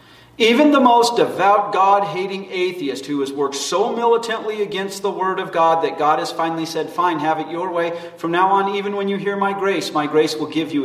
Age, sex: 40-59, male